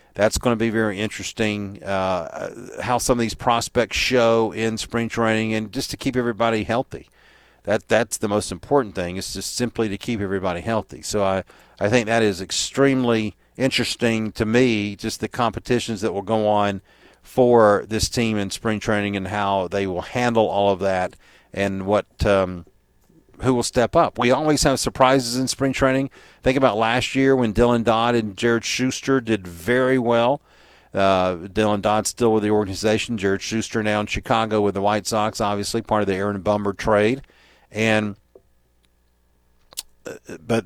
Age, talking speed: 40-59, 175 wpm